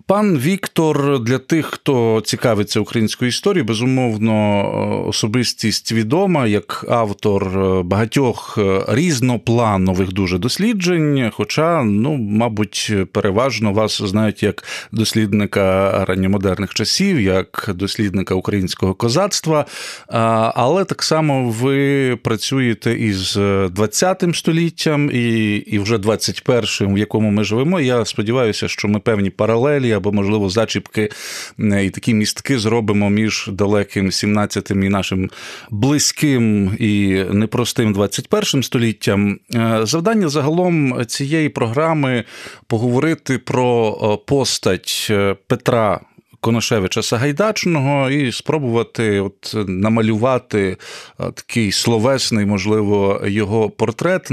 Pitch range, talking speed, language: 105-135 Hz, 100 wpm, Ukrainian